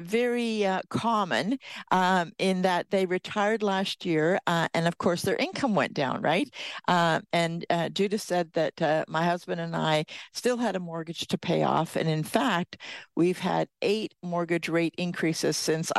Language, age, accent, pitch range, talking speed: English, 50-69, American, 165-200 Hz, 175 wpm